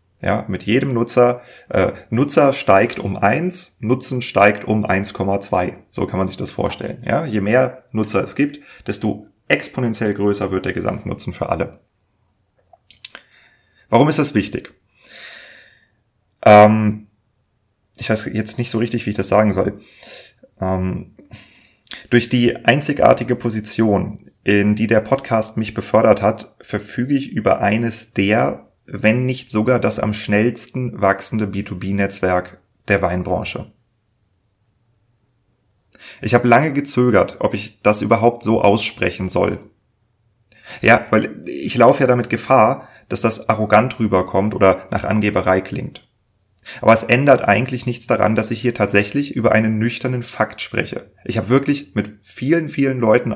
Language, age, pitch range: German, 30-49, 100-120 Hz